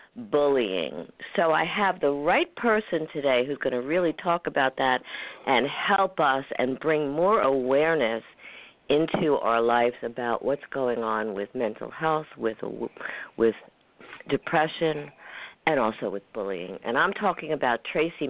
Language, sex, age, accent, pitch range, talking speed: English, female, 50-69, American, 130-165 Hz, 145 wpm